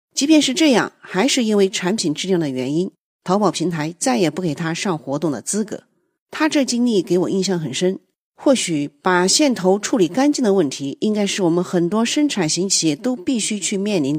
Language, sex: Chinese, female